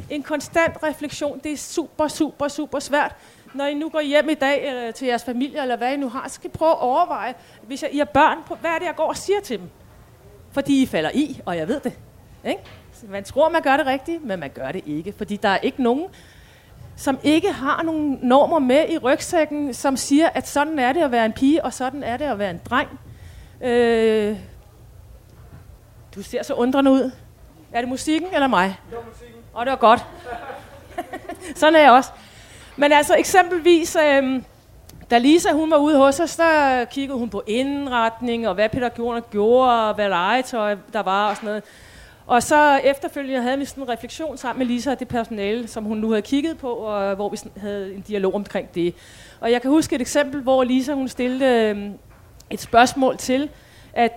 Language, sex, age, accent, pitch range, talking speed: Danish, female, 30-49, native, 220-295 Hz, 205 wpm